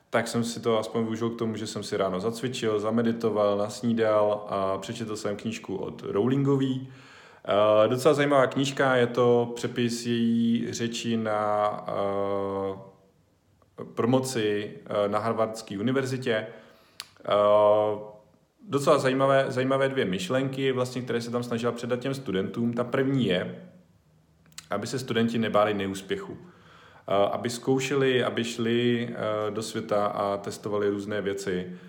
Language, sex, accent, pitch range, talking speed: Czech, male, native, 105-130 Hz, 120 wpm